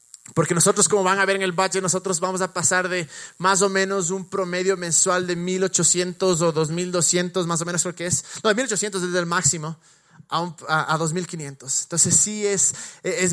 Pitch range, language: 175-205 Hz, Spanish